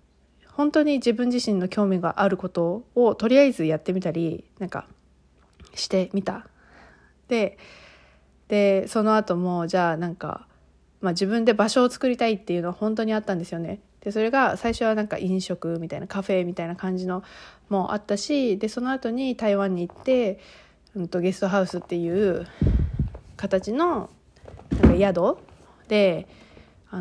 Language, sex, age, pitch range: Japanese, female, 20-39, 175-210 Hz